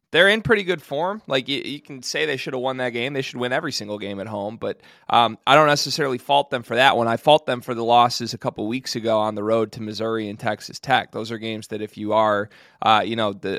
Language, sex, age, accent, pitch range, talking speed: English, male, 30-49, American, 110-145 Hz, 280 wpm